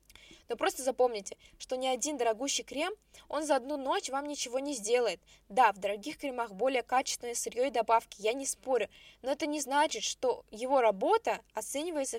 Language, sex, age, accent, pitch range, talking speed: Russian, female, 10-29, native, 235-325 Hz, 170 wpm